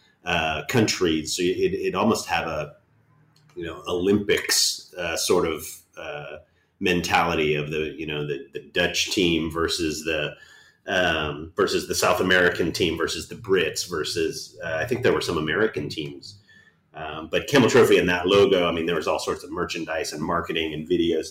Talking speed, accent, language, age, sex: 175 wpm, American, English, 30-49, male